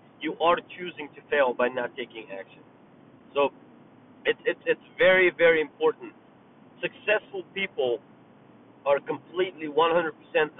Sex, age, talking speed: male, 30-49, 120 wpm